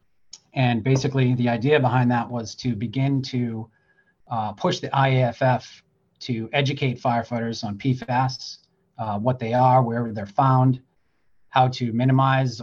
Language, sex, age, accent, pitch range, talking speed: English, male, 30-49, American, 110-130 Hz, 140 wpm